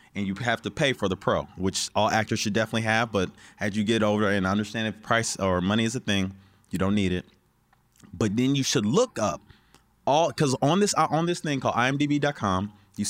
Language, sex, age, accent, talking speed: English, male, 30-49, American, 220 wpm